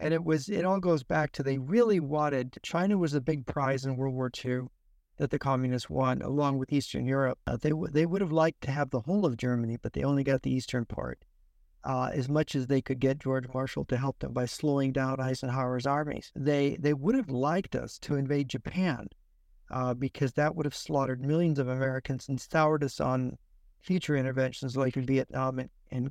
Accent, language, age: American, English, 50-69